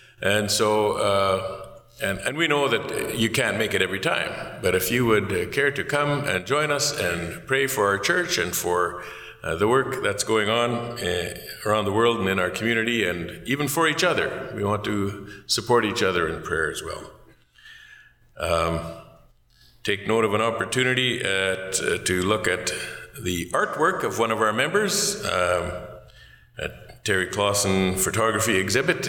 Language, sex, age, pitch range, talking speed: English, male, 50-69, 95-115 Hz, 165 wpm